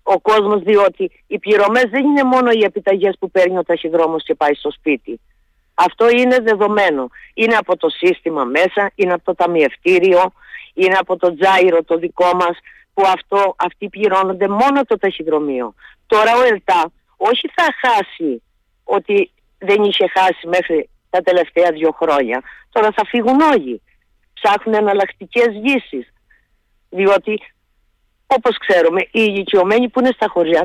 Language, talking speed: Greek, 145 wpm